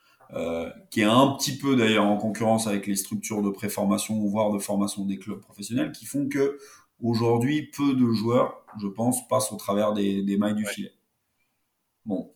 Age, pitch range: 30-49, 105-125 Hz